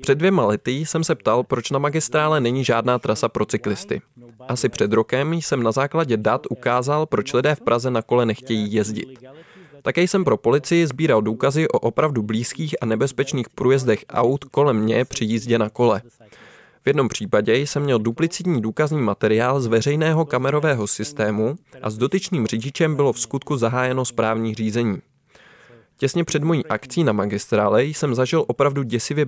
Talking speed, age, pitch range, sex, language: 165 wpm, 20-39, 115-150 Hz, male, Czech